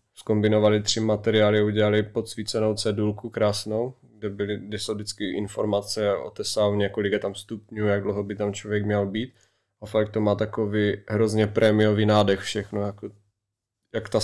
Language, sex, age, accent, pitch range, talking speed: Czech, male, 20-39, native, 105-110 Hz, 160 wpm